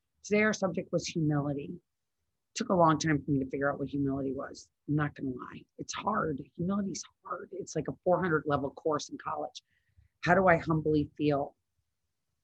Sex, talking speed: female, 185 wpm